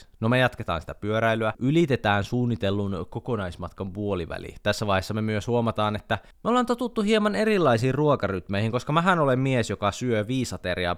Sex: male